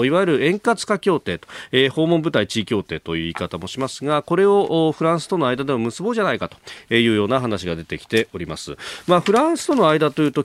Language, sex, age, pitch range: Japanese, male, 40-59, 105-160 Hz